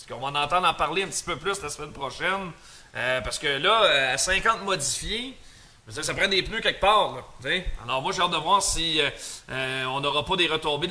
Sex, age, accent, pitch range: male, 30-49, Canadian, 145-195 Hz